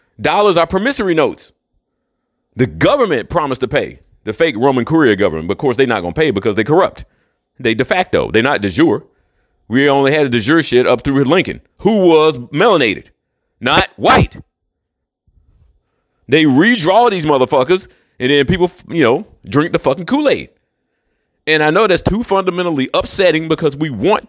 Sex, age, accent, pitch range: male, 40-59, American, 135-205 Hz